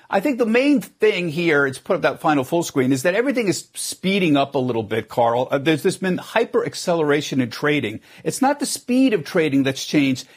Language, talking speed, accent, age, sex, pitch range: English, 220 wpm, American, 50-69, male, 140-185 Hz